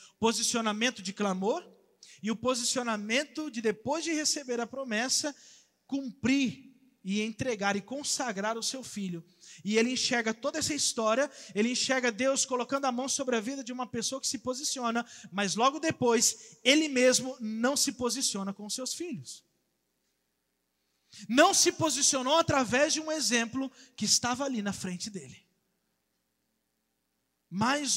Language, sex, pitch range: Portuguese, male, 190-250 Hz